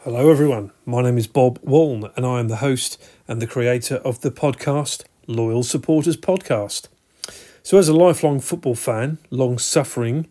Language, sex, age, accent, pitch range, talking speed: English, male, 40-59, British, 120-150 Hz, 170 wpm